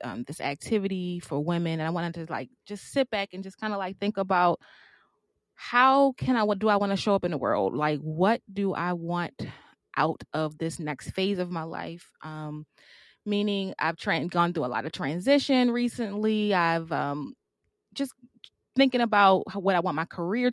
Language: English